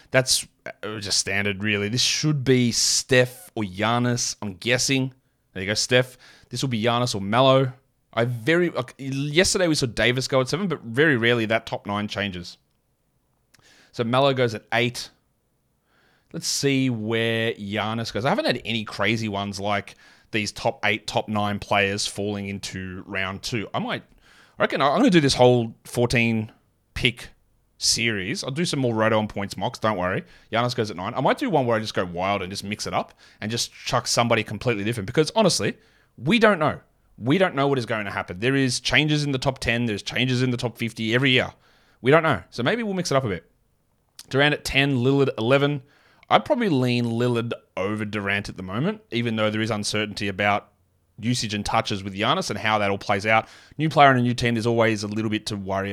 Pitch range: 105-130 Hz